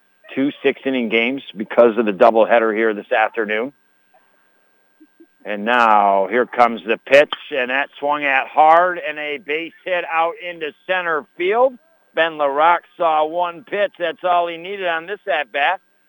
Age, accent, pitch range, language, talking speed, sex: 60-79, American, 130-175 Hz, English, 155 wpm, male